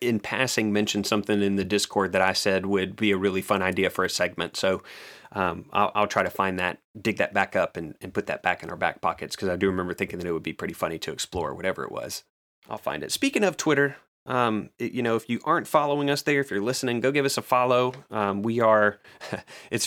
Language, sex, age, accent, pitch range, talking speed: English, male, 30-49, American, 100-115 Hz, 250 wpm